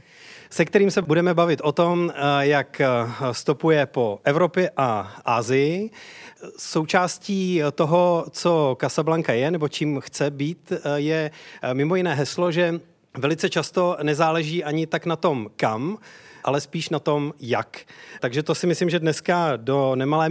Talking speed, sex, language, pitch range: 140 wpm, male, Czech, 135-165 Hz